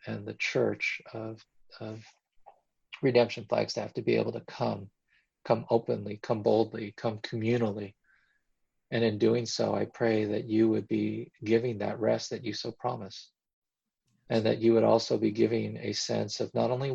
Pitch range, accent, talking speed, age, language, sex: 110-125 Hz, American, 175 wpm, 40-59, English, male